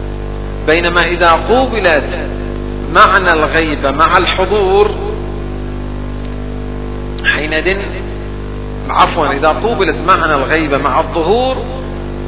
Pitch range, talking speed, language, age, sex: 115-170 Hz, 70 wpm, Arabic, 50-69, male